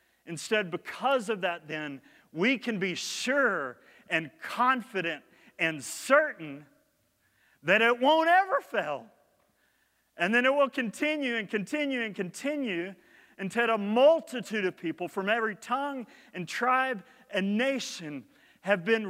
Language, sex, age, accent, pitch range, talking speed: English, male, 40-59, American, 190-275 Hz, 130 wpm